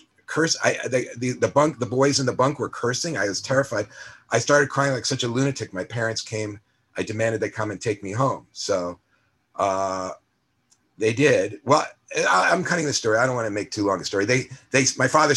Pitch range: 105-135 Hz